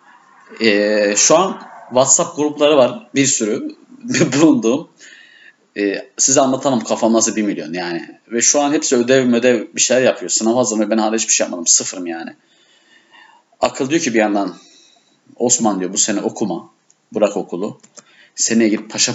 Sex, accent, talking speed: male, native, 155 wpm